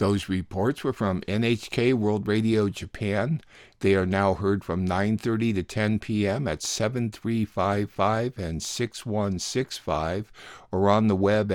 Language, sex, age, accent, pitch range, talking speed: English, male, 60-79, American, 95-115 Hz, 130 wpm